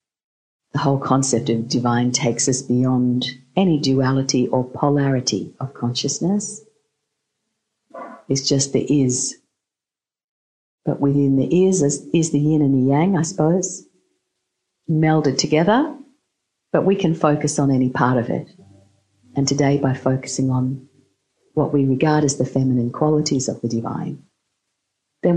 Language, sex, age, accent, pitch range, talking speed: English, female, 50-69, Australian, 125-155 Hz, 135 wpm